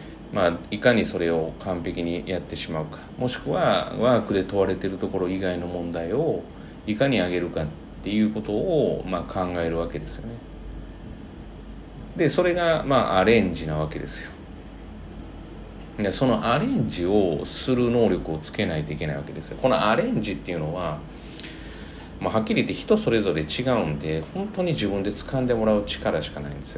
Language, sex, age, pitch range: Japanese, male, 40-59, 80-125 Hz